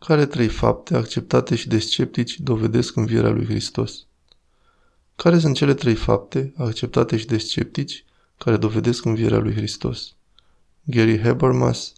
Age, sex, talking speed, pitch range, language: 20-39, male, 130 wpm, 110-125 Hz, Romanian